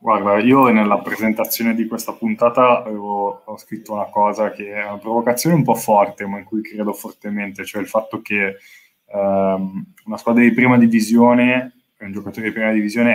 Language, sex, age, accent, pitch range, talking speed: Italian, male, 10-29, native, 105-120 Hz, 180 wpm